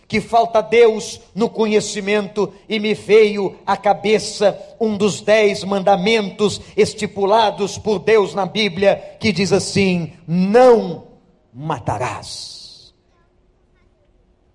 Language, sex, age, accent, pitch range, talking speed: Portuguese, male, 50-69, Brazilian, 195-255 Hz, 100 wpm